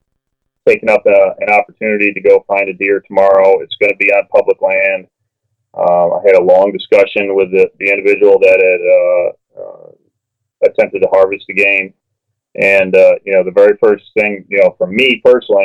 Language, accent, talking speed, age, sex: English, American, 190 wpm, 30-49, male